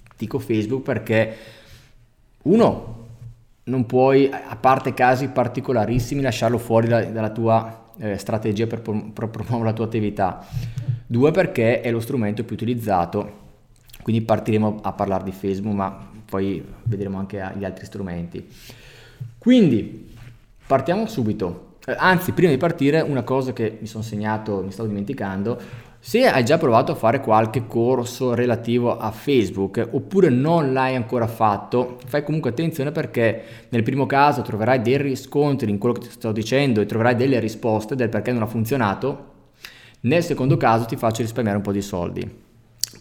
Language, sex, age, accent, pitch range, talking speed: Italian, male, 20-39, native, 110-130 Hz, 155 wpm